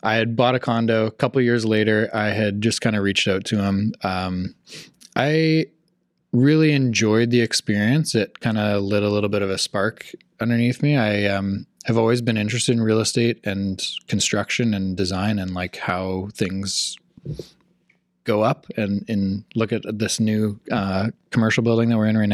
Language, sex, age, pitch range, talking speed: English, male, 20-39, 100-115 Hz, 185 wpm